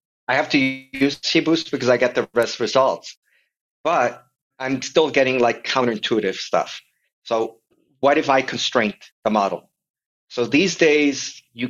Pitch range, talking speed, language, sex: 115-140 Hz, 150 wpm, English, male